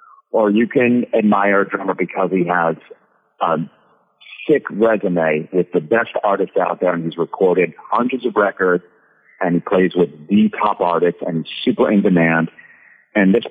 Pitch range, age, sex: 85-110 Hz, 40-59, male